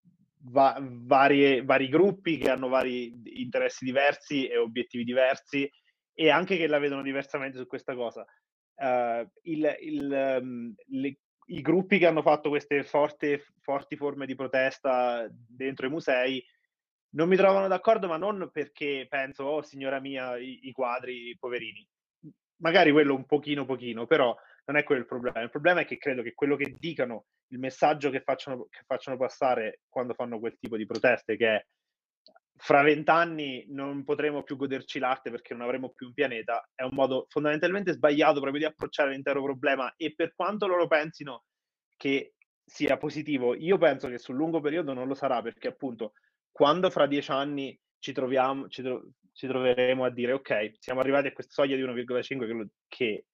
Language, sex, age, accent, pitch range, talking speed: Italian, male, 30-49, native, 130-150 Hz, 165 wpm